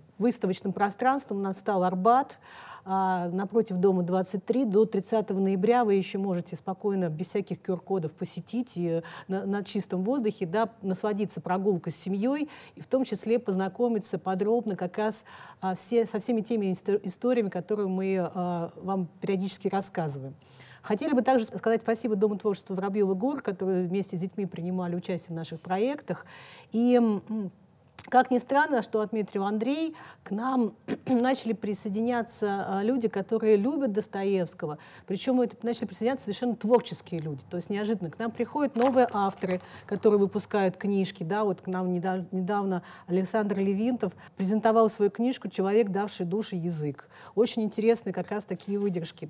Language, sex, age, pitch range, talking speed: Russian, female, 40-59, 185-230 Hz, 150 wpm